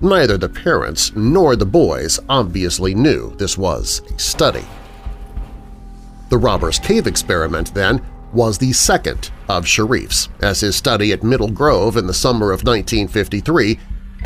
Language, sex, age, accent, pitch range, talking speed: English, male, 40-59, American, 90-130 Hz, 140 wpm